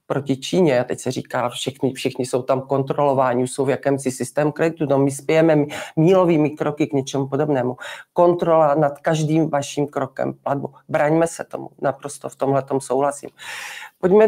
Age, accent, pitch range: 40-59, native, 135-150 Hz